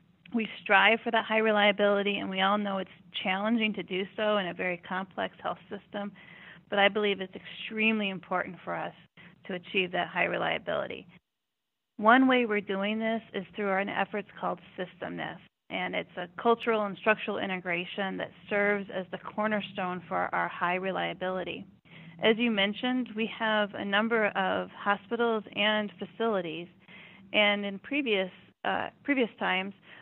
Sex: female